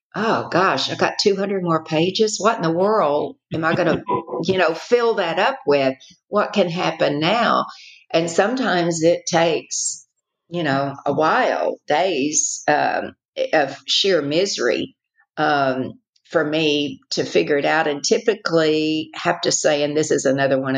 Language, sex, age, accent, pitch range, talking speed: English, female, 50-69, American, 140-205 Hz, 160 wpm